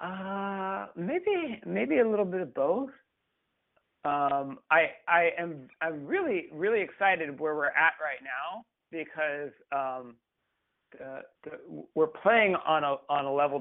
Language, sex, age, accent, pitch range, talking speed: English, male, 40-59, American, 135-175 Hz, 130 wpm